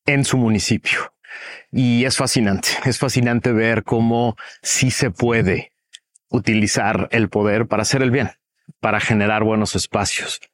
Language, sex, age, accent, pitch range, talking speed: Spanish, male, 40-59, Mexican, 110-130 Hz, 135 wpm